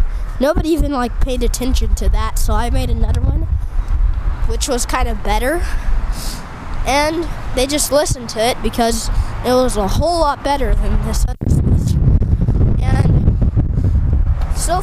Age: 10-29